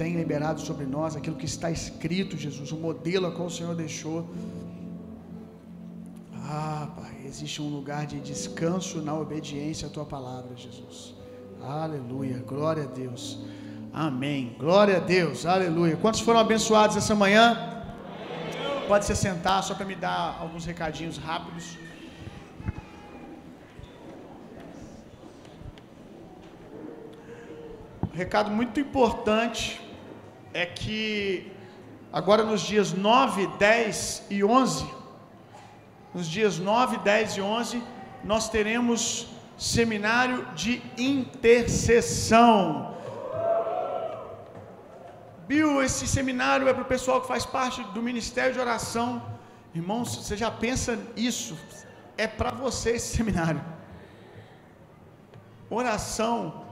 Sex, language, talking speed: male, Gujarati, 110 wpm